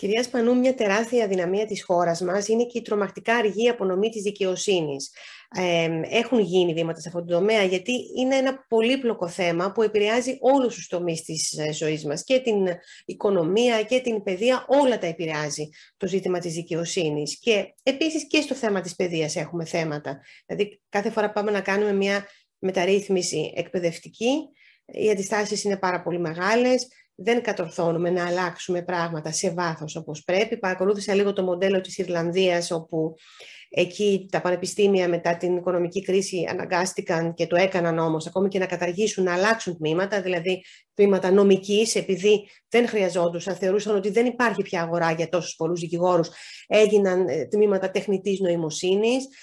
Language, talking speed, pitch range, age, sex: Greek, 155 wpm, 175-220 Hz, 30-49, female